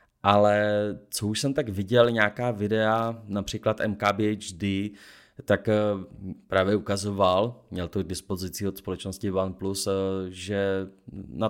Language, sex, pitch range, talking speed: Czech, male, 100-125 Hz, 115 wpm